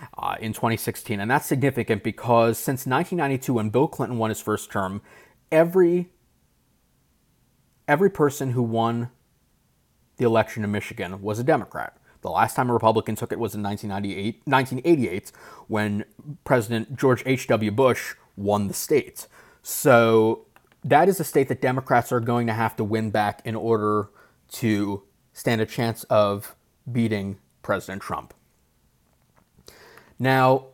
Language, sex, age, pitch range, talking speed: English, male, 30-49, 110-130 Hz, 140 wpm